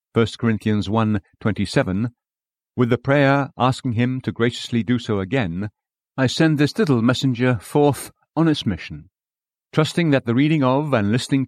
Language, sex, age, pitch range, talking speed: English, male, 60-79, 110-140 Hz, 150 wpm